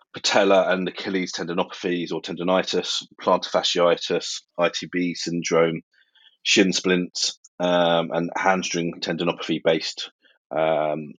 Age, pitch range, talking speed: 30-49, 80-95 Hz, 90 wpm